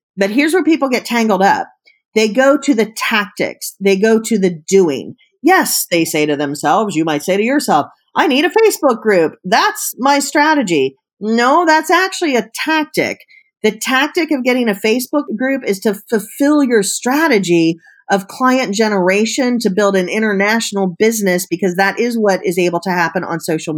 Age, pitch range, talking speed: 40-59, 175-240 Hz, 175 wpm